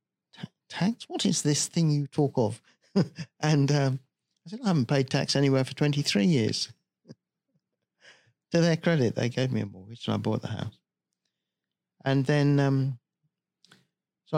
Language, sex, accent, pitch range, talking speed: English, male, British, 110-145 Hz, 155 wpm